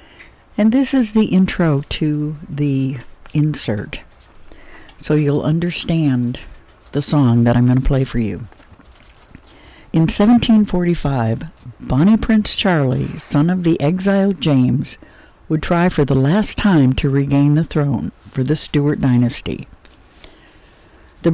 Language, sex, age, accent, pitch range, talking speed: English, female, 60-79, American, 135-170 Hz, 125 wpm